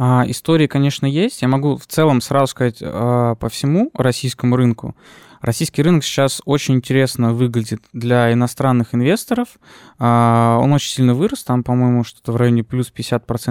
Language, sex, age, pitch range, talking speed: Russian, male, 20-39, 120-145 Hz, 140 wpm